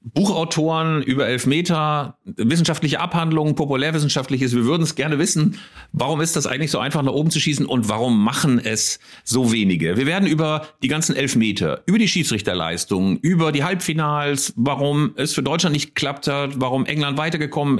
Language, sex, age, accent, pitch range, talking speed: German, male, 40-59, German, 125-160 Hz, 165 wpm